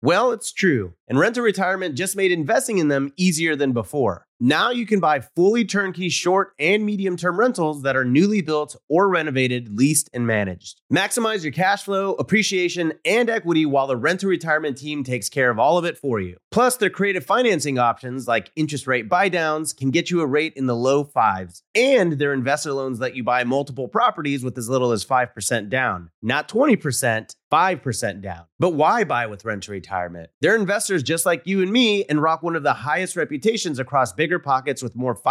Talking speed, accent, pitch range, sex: 200 wpm, American, 125-180 Hz, male